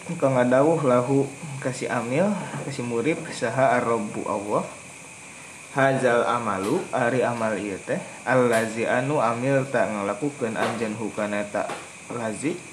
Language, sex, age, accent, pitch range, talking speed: Indonesian, male, 20-39, native, 120-150 Hz, 115 wpm